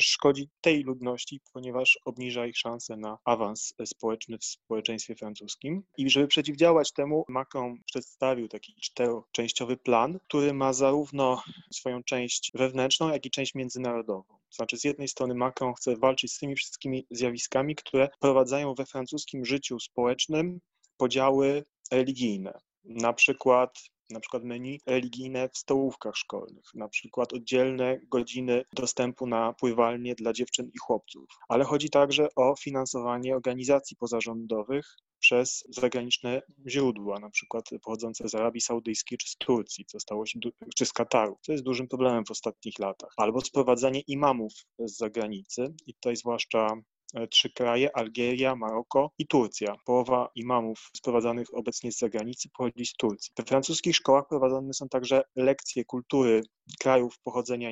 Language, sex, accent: Polish, male, native